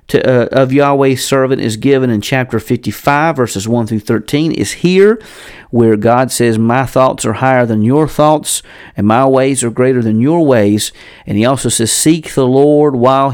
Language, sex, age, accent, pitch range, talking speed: English, male, 40-59, American, 110-135 Hz, 185 wpm